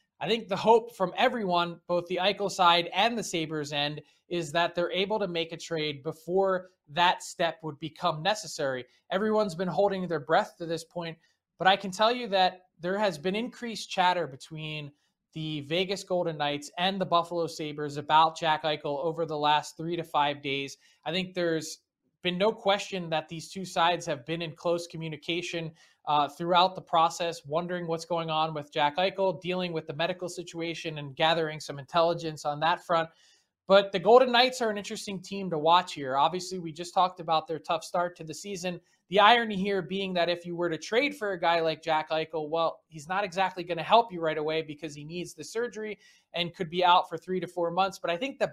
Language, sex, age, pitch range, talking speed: English, male, 20-39, 160-190 Hz, 210 wpm